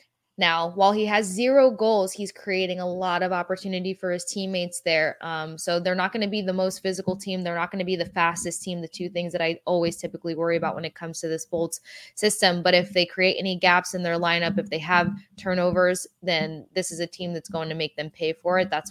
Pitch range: 170-190 Hz